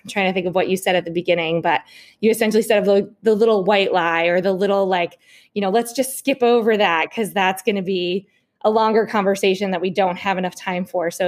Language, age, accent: English, 20-39, American